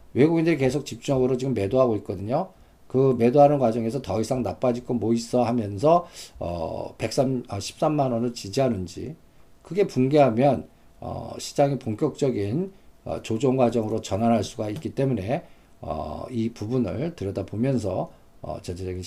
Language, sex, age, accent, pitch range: Korean, male, 50-69, native, 105-140 Hz